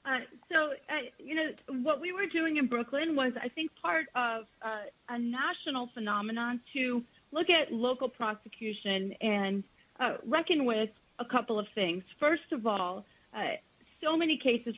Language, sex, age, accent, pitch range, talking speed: English, female, 30-49, American, 205-260 Hz, 160 wpm